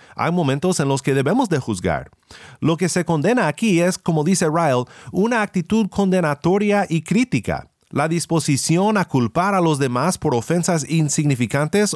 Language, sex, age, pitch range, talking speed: Spanish, male, 40-59, 140-195 Hz, 160 wpm